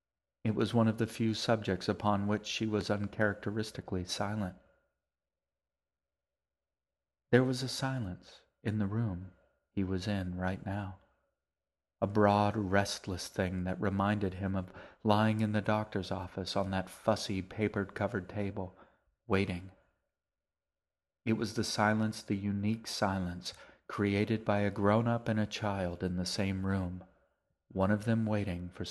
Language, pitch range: English, 90-110 Hz